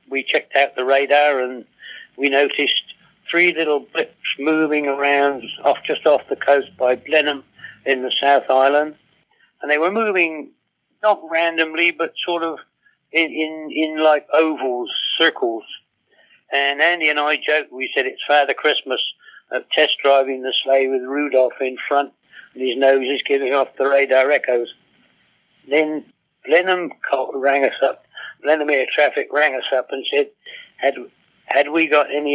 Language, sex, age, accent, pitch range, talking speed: English, male, 60-79, British, 130-155 Hz, 160 wpm